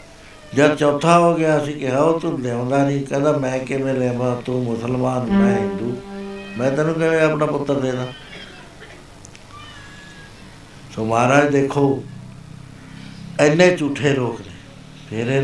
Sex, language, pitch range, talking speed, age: male, Punjabi, 125-150 Hz, 115 wpm, 60-79